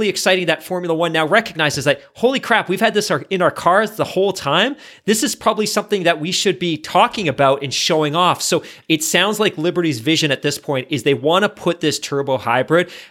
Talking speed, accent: 220 wpm, American